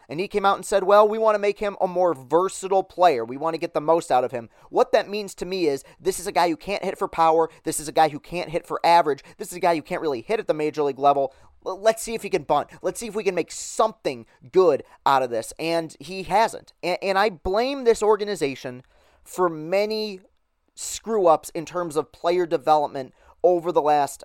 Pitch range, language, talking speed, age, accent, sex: 135-185 Hz, English, 245 wpm, 30-49, American, male